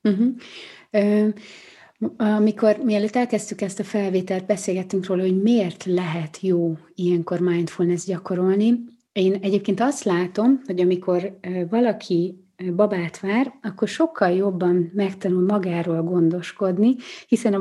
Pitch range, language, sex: 170-205 Hz, Hungarian, female